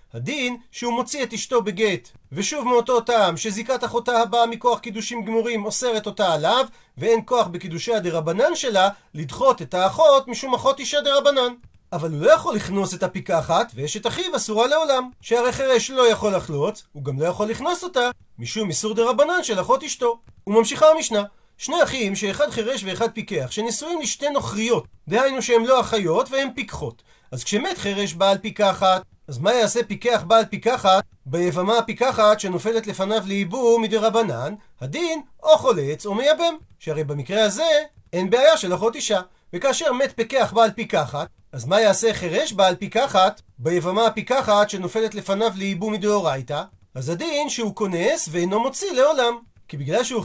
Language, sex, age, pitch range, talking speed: Hebrew, male, 40-59, 185-250 Hz, 160 wpm